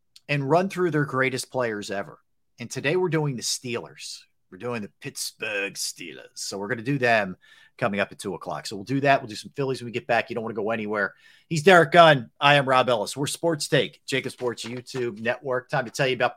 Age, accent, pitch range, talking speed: 40-59, American, 115-145 Hz, 240 wpm